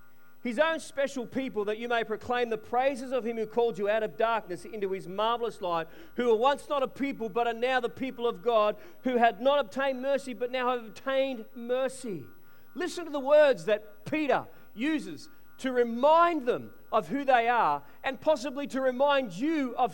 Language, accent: English, Australian